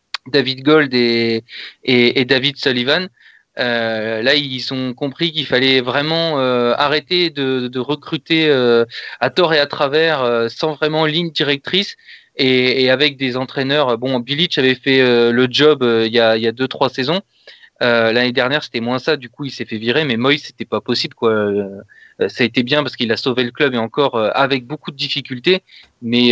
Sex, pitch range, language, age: male, 120-145 Hz, French, 20-39